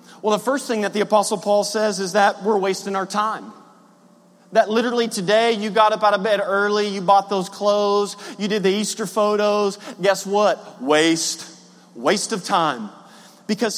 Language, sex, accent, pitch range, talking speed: English, male, American, 200-235 Hz, 180 wpm